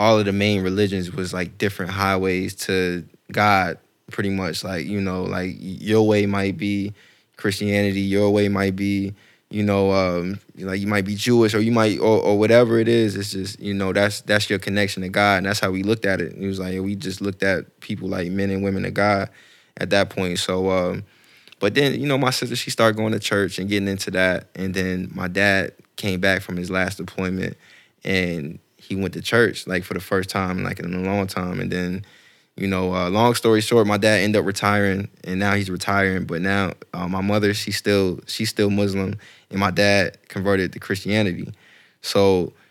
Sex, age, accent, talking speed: male, 20-39, American, 215 wpm